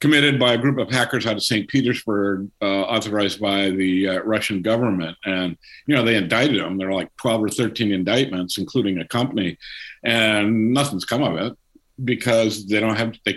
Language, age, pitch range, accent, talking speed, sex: English, 50-69, 100-125 Hz, American, 195 wpm, male